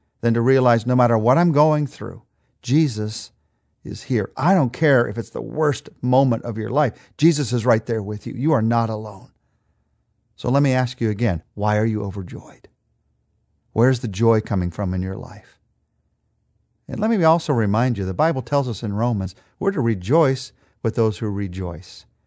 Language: English